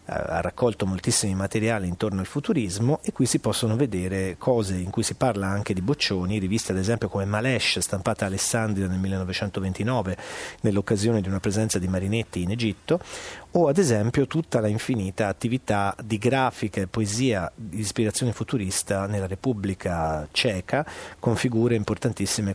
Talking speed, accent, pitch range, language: 150 wpm, native, 100-130 Hz, Italian